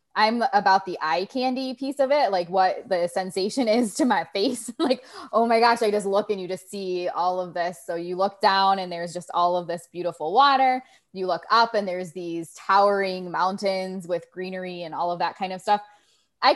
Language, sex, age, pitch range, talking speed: English, female, 20-39, 180-210 Hz, 215 wpm